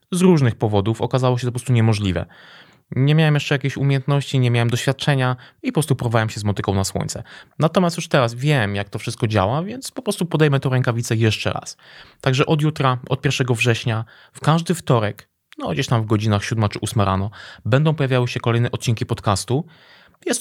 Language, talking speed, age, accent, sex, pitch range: Polish, 195 wpm, 20-39, native, male, 110-140 Hz